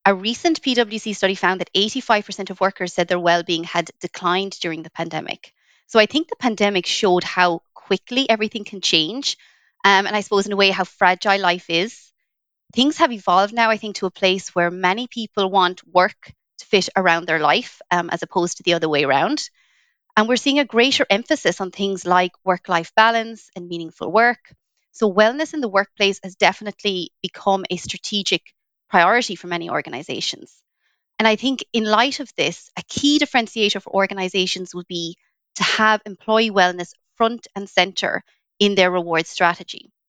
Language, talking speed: English, 180 wpm